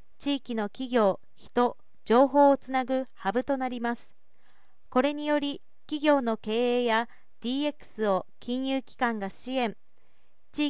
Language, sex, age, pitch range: Japanese, female, 40-59, 225-275 Hz